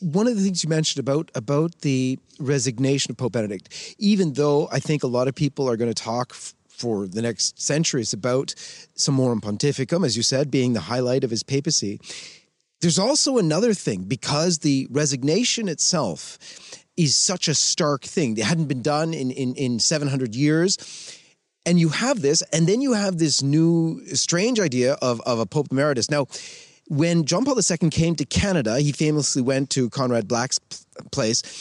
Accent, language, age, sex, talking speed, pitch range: American, English, 30-49, male, 180 wpm, 130-175 Hz